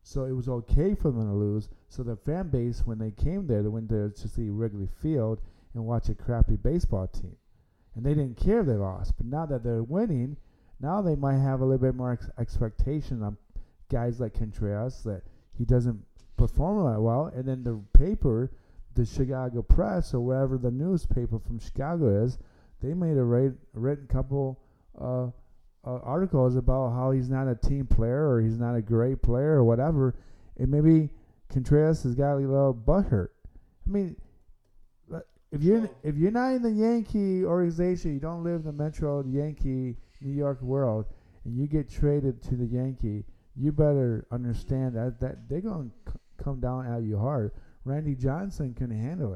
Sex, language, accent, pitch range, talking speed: male, English, American, 115-145 Hz, 180 wpm